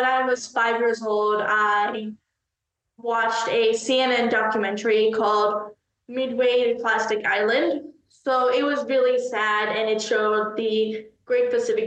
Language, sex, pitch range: English, female, 220-255 Hz